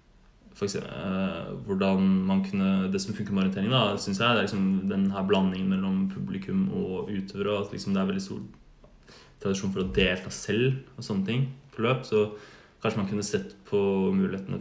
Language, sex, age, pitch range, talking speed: Swedish, male, 20-39, 100-165 Hz, 170 wpm